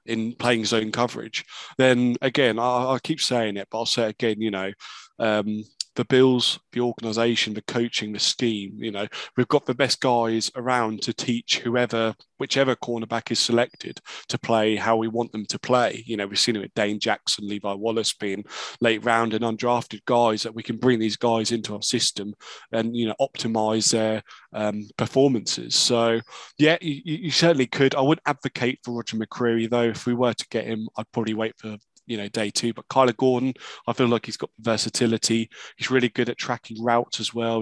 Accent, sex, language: British, male, English